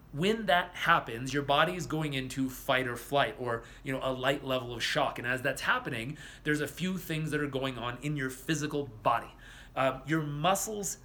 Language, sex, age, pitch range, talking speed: English, male, 30-49, 135-175 Hz, 205 wpm